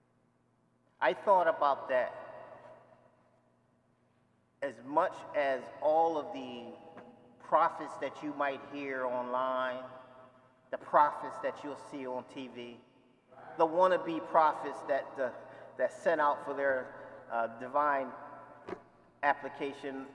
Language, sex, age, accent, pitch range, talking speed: English, male, 40-59, American, 135-215 Hz, 105 wpm